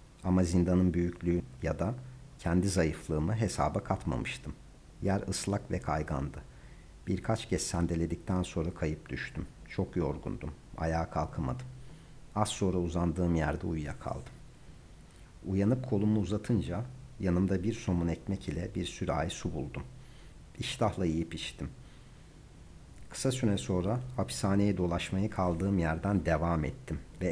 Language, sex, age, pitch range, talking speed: Turkish, male, 50-69, 80-100 Hz, 115 wpm